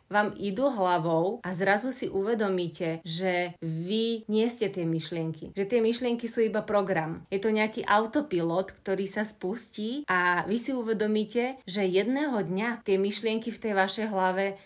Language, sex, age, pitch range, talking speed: Slovak, female, 30-49, 185-220 Hz, 160 wpm